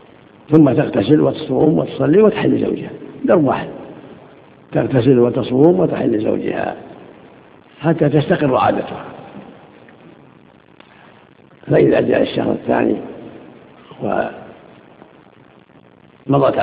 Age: 60-79